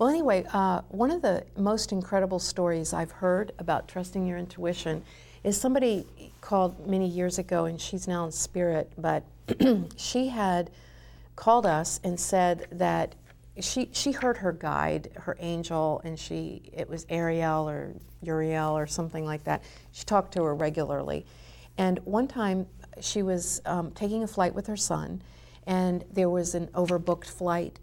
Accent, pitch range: American, 165-195 Hz